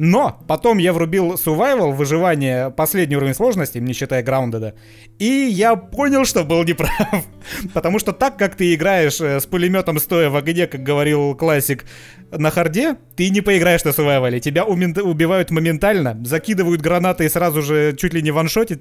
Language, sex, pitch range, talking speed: Russian, male, 145-195 Hz, 165 wpm